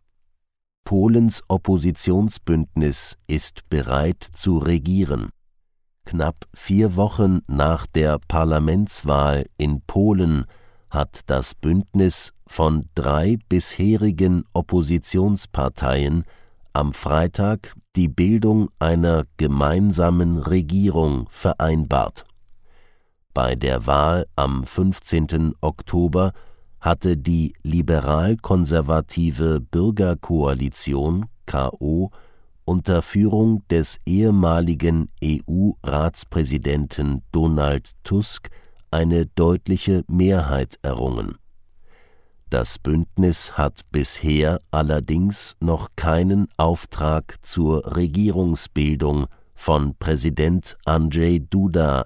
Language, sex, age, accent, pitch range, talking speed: English, male, 50-69, German, 75-95 Hz, 75 wpm